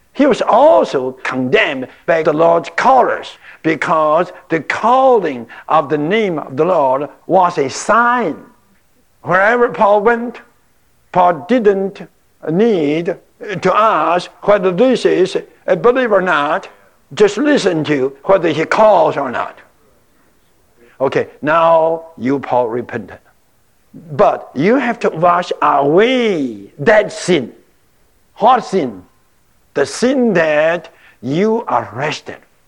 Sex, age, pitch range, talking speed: male, 60-79, 150-240 Hz, 120 wpm